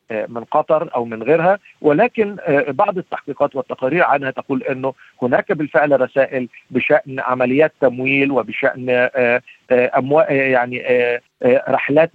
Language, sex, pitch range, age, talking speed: Arabic, male, 125-165 Hz, 50-69, 110 wpm